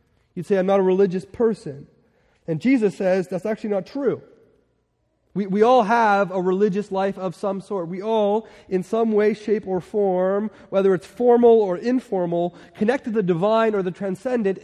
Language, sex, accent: English, male, American